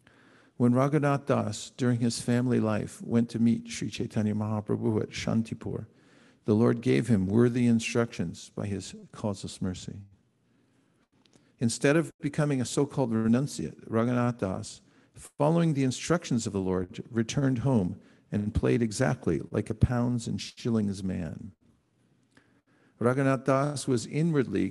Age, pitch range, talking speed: 50-69, 110-135 Hz, 130 wpm